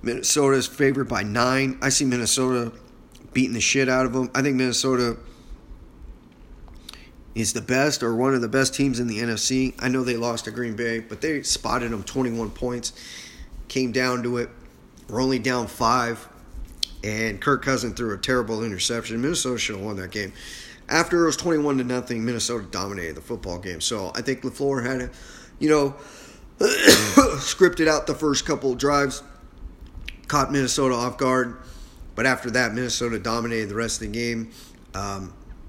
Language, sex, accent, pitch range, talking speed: English, male, American, 105-130 Hz, 175 wpm